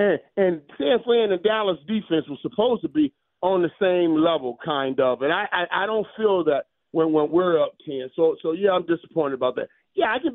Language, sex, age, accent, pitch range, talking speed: English, male, 40-59, American, 140-195 Hz, 225 wpm